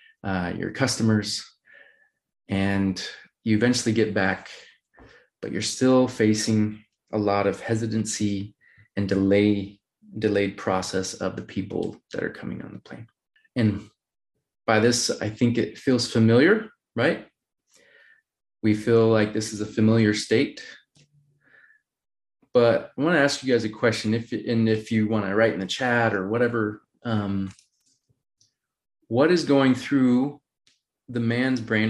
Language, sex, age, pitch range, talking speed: English, male, 30-49, 105-130 Hz, 140 wpm